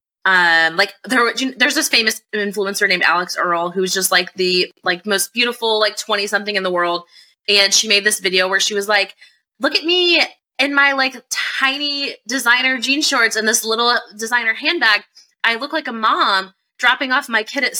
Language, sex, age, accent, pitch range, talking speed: English, female, 20-39, American, 175-225 Hz, 190 wpm